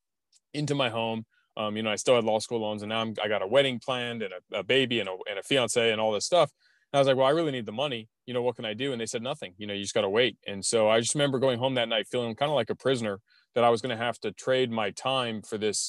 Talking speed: 320 wpm